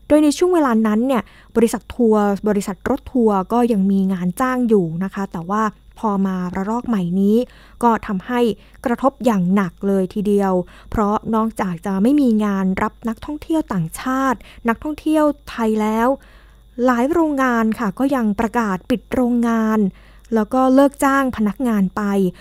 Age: 20-39